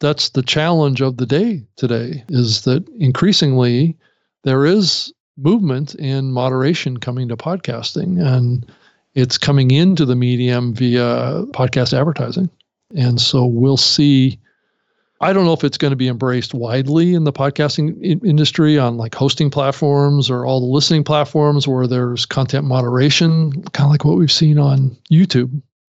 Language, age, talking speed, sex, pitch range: English, 50-69, 155 wpm, male, 125-150 Hz